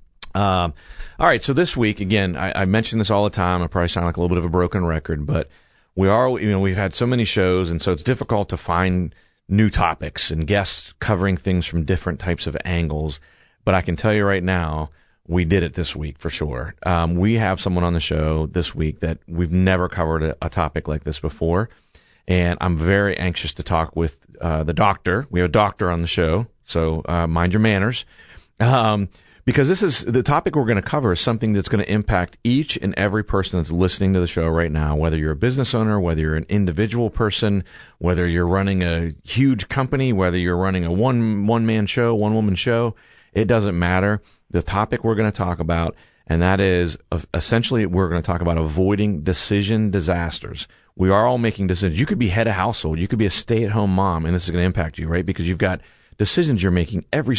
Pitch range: 85-105 Hz